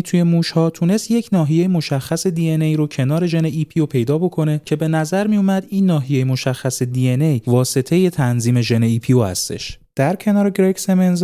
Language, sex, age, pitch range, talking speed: Persian, male, 30-49, 130-180 Hz, 165 wpm